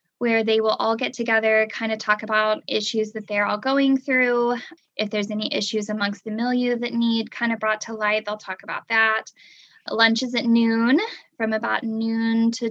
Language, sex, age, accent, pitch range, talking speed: English, female, 10-29, American, 215-235 Hz, 205 wpm